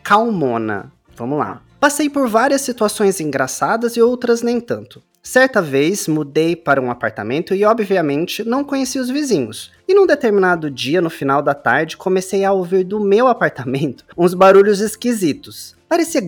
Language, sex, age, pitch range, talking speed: Portuguese, male, 20-39, 150-215 Hz, 155 wpm